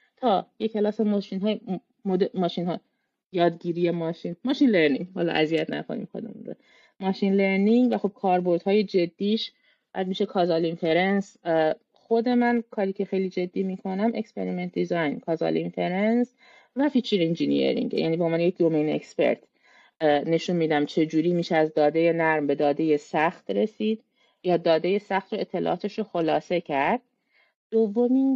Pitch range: 170-225 Hz